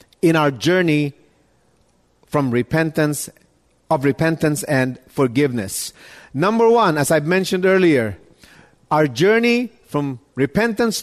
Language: English